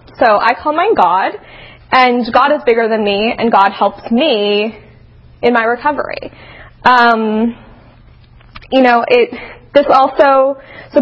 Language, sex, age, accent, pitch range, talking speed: English, female, 20-39, American, 225-295 Hz, 135 wpm